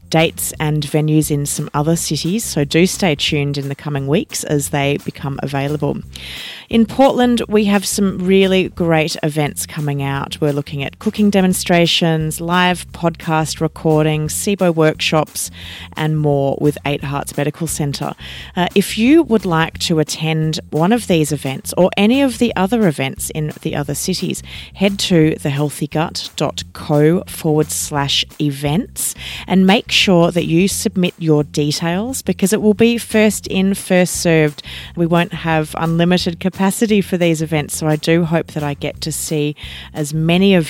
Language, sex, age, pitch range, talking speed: English, female, 30-49, 150-185 Hz, 160 wpm